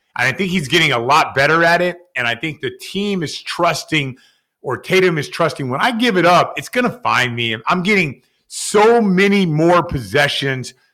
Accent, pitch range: American, 135-195 Hz